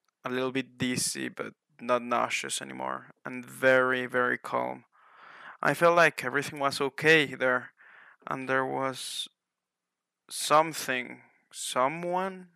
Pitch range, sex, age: 125-135 Hz, male, 20-39